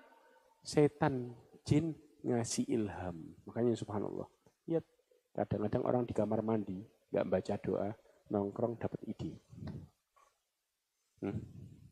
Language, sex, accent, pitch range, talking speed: Indonesian, male, native, 110-165 Hz, 95 wpm